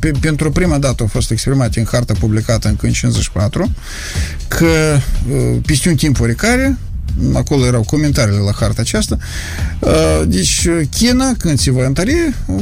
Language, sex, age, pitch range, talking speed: Romanian, male, 50-69, 115-195 Hz, 135 wpm